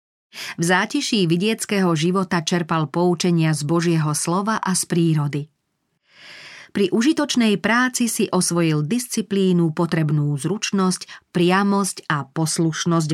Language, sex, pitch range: Slovak, female, 160-200 Hz